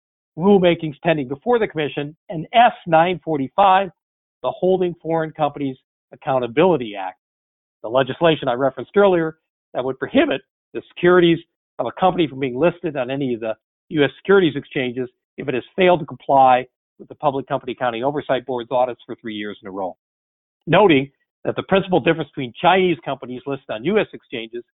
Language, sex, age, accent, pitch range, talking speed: English, male, 50-69, American, 125-170 Hz, 165 wpm